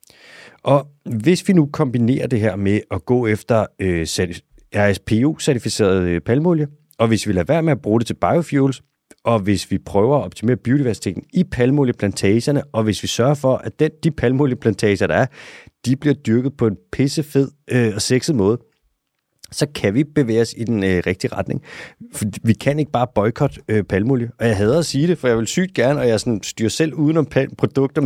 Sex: male